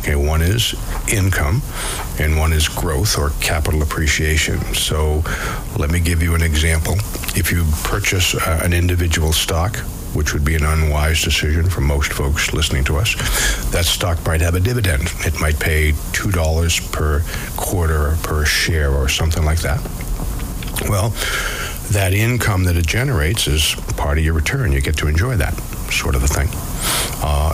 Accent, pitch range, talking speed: American, 75-95 Hz, 160 wpm